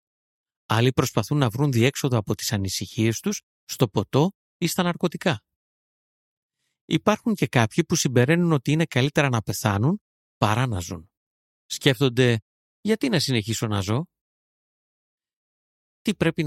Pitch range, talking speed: 110-165 Hz, 130 wpm